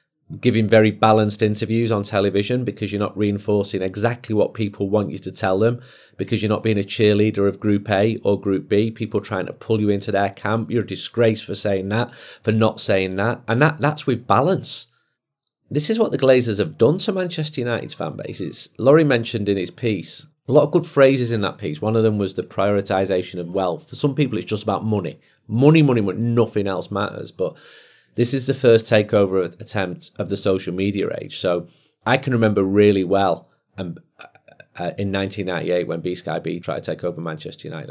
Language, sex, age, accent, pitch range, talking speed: English, male, 30-49, British, 95-120 Hz, 205 wpm